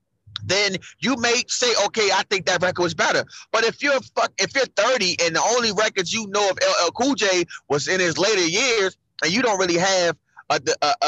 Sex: male